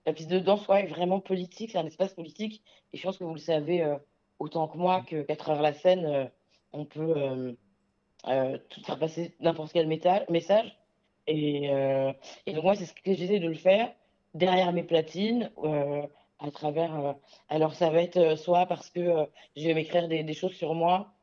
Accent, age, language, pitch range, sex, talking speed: French, 20-39, French, 145-180 Hz, female, 210 wpm